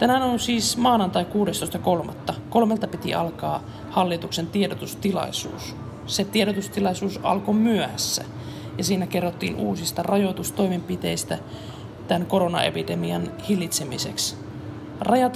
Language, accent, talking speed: Finnish, native, 90 wpm